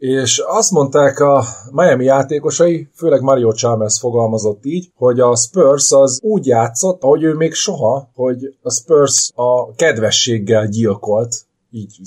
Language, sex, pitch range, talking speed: Hungarian, male, 110-140 Hz, 135 wpm